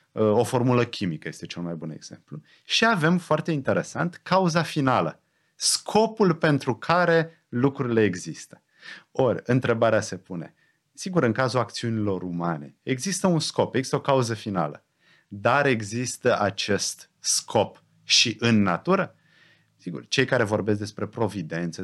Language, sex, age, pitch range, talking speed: Romanian, male, 30-49, 95-135 Hz, 130 wpm